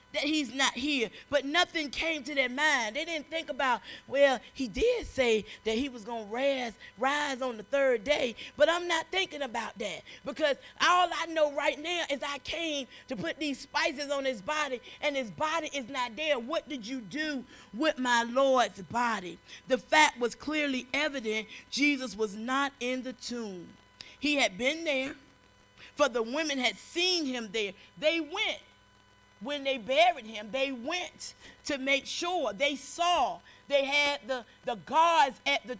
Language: English